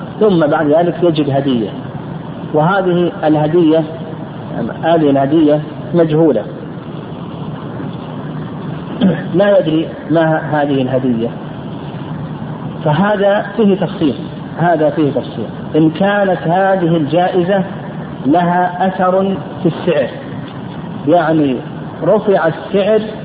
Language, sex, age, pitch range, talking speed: Arabic, male, 50-69, 150-180 Hz, 85 wpm